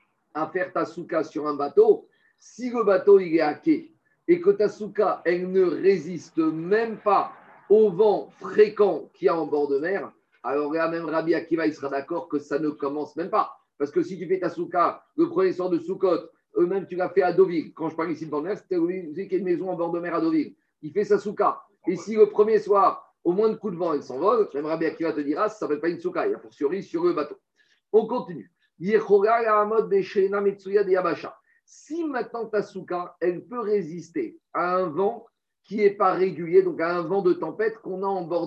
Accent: French